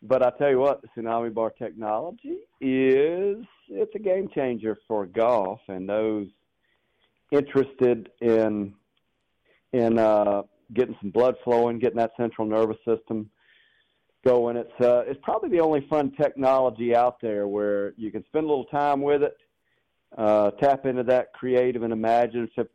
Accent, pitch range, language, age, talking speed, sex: American, 110-140 Hz, English, 50-69, 150 wpm, male